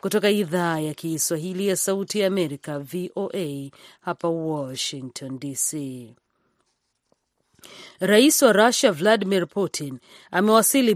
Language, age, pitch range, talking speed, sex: Swahili, 40-59, 160-200 Hz, 95 wpm, female